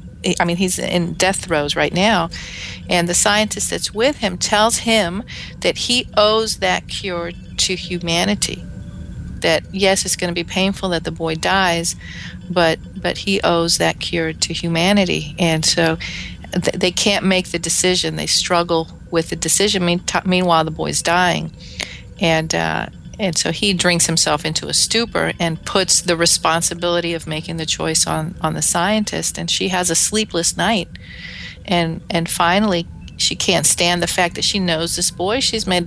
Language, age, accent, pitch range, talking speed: English, 40-59, American, 165-195 Hz, 170 wpm